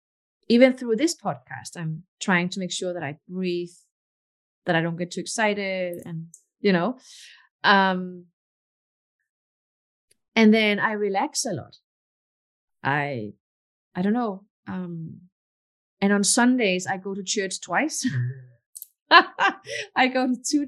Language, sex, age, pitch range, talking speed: English, female, 30-49, 170-215 Hz, 130 wpm